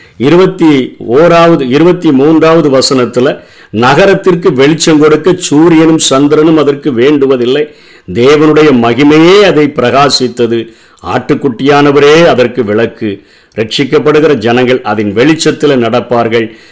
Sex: male